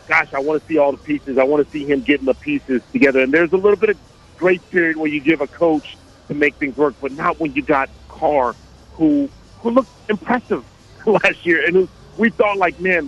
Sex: male